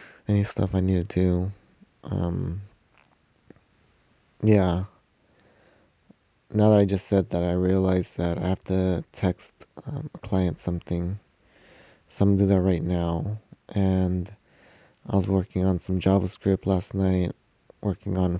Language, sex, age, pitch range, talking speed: English, male, 20-39, 95-100 Hz, 135 wpm